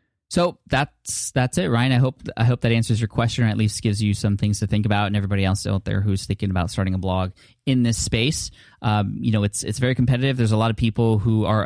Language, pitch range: English, 95-115 Hz